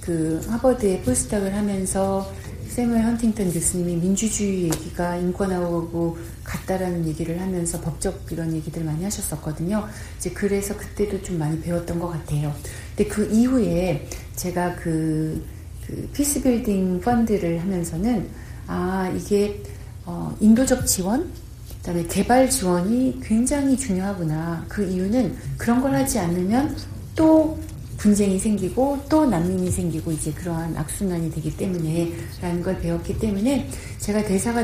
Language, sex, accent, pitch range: Korean, female, native, 160-205 Hz